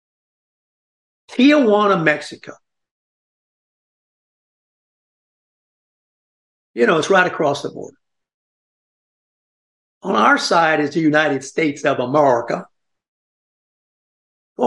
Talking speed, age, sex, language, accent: 80 wpm, 60-79, male, English, American